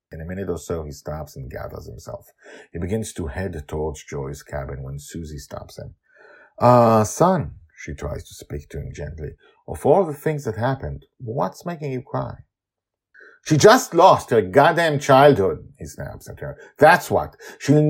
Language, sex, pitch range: English, male, 75-125 Hz